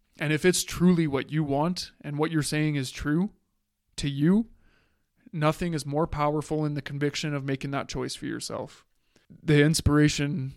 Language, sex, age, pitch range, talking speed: English, male, 20-39, 135-155 Hz, 170 wpm